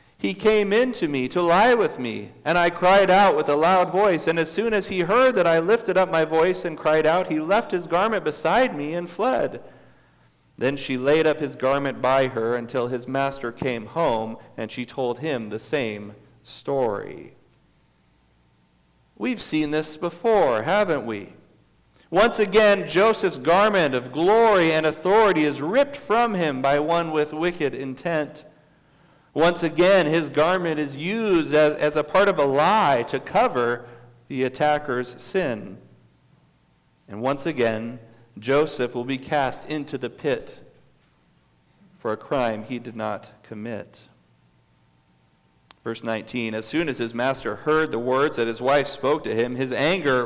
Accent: American